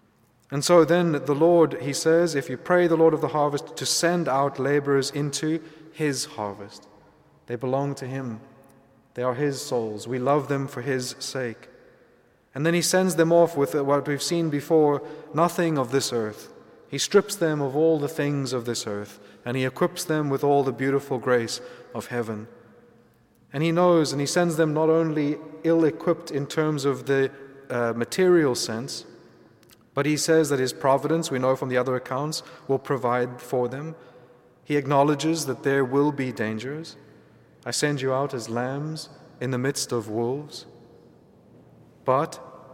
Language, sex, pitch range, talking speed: English, male, 125-155 Hz, 175 wpm